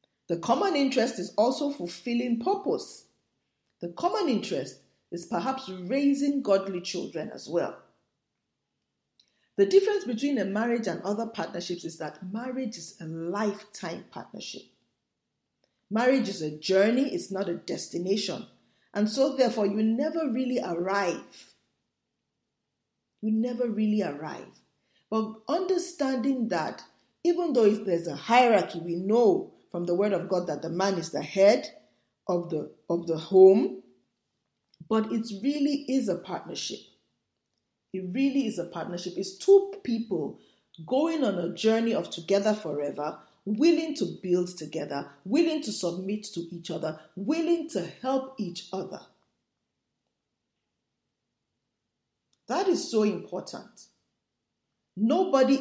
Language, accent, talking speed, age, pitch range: English, Nigerian, 125 wpm, 40-59, 175-265 Hz